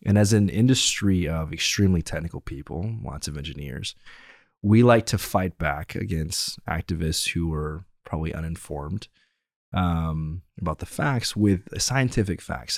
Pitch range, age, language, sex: 80-100 Hz, 20-39, English, male